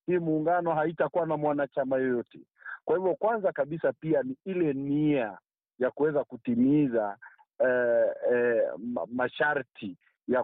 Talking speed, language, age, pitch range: 120 wpm, Swahili, 50-69, 120-175 Hz